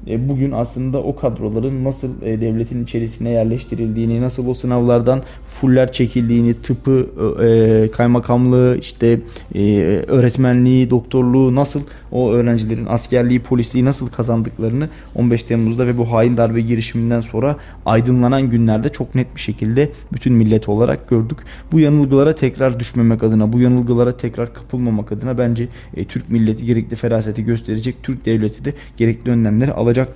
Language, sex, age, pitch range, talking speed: Turkish, male, 20-39, 115-130 Hz, 135 wpm